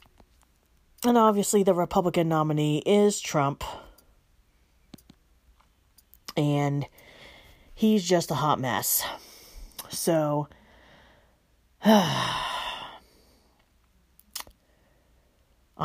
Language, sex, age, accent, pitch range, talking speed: English, female, 40-59, American, 120-165 Hz, 55 wpm